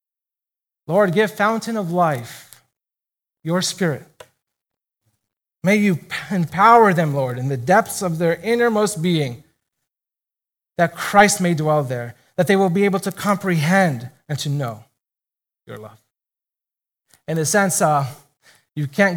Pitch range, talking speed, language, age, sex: 155-220 Hz, 130 wpm, English, 30-49, male